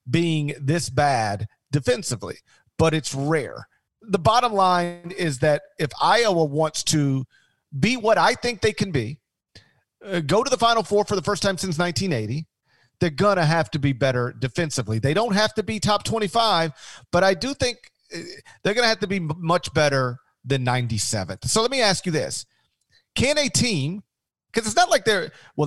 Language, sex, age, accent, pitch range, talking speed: English, male, 40-59, American, 140-195 Hz, 180 wpm